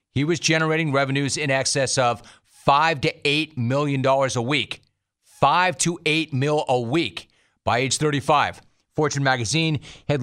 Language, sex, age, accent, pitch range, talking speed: English, male, 40-59, American, 120-150 Hz, 140 wpm